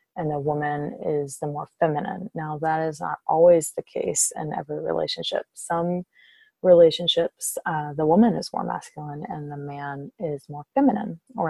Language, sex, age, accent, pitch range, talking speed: English, female, 20-39, American, 155-200 Hz, 165 wpm